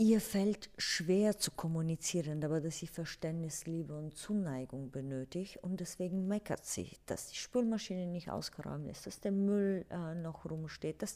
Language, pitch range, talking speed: German, 150-190 Hz, 155 wpm